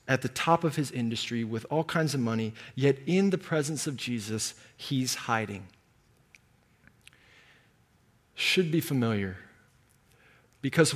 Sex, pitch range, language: male, 115-140 Hz, English